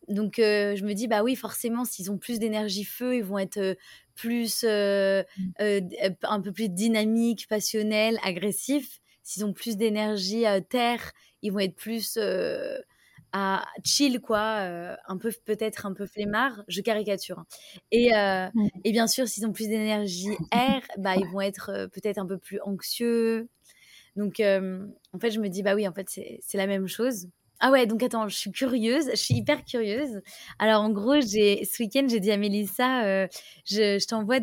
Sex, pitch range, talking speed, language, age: female, 195-230 Hz, 195 wpm, French, 20-39